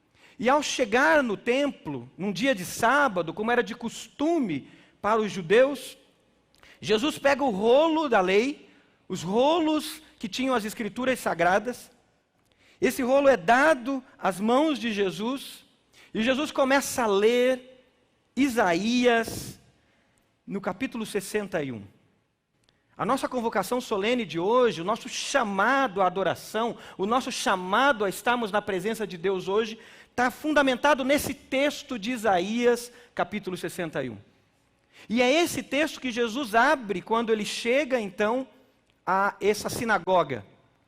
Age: 40-59